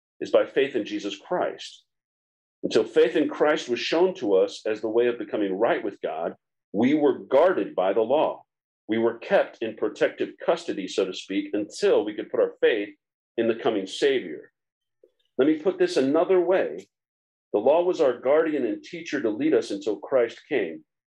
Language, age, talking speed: English, 50-69, 185 wpm